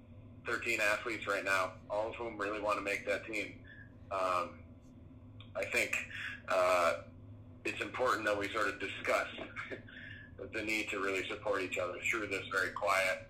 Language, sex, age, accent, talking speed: English, male, 30-49, American, 160 wpm